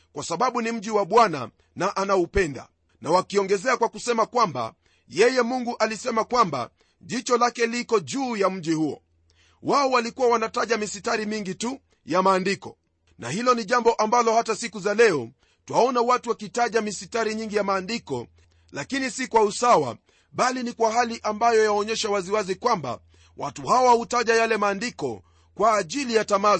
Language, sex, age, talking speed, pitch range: Swahili, male, 40-59, 155 wpm, 175-240 Hz